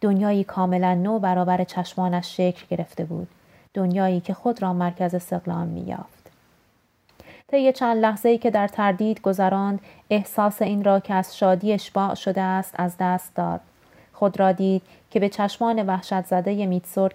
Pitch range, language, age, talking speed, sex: 180-205 Hz, Persian, 30-49, 150 wpm, female